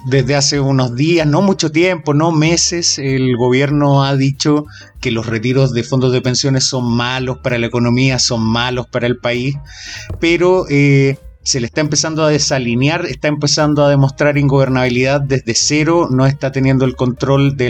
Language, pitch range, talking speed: Spanish, 125-165 Hz, 175 wpm